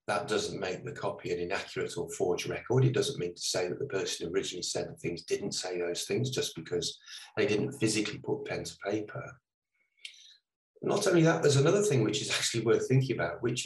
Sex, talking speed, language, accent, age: male, 210 wpm, English, British, 30-49